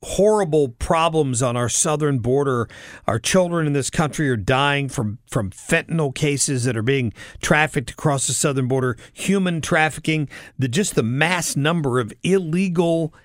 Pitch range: 130-165 Hz